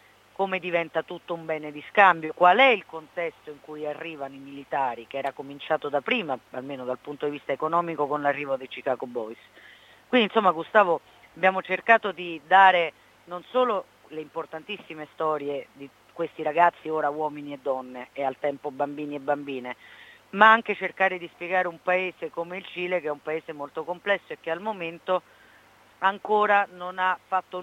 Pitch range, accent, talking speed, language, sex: 150-185 Hz, native, 175 wpm, Italian, female